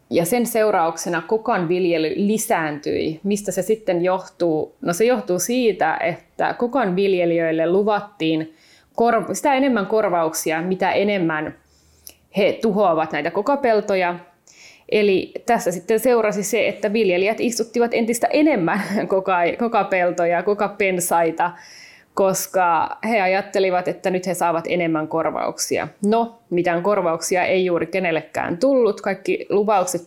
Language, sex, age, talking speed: Finnish, female, 20-39, 115 wpm